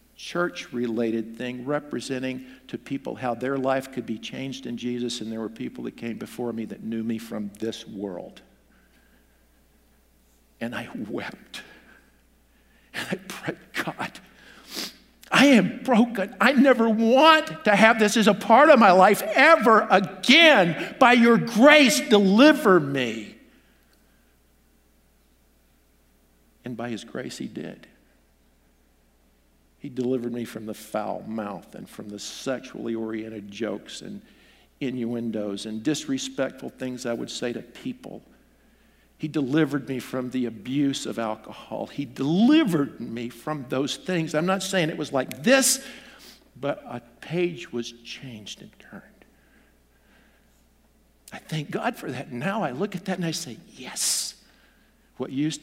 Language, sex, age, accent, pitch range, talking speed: English, male, 60-79, American, 110-185 Hz, 140 wpm